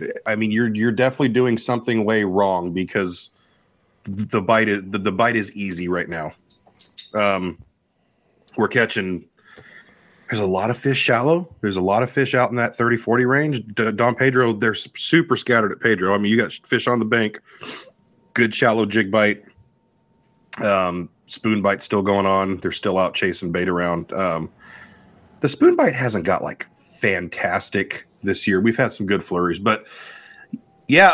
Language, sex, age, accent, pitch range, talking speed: English, male, 30-49, American, 95-125 Hz, 170 wpm